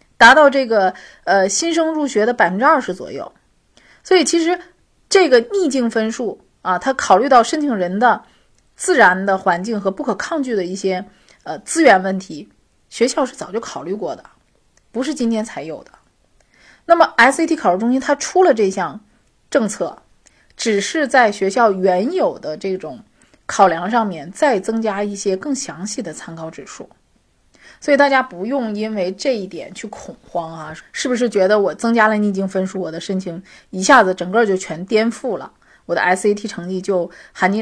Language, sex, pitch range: Chinese, female, 185-265 Hz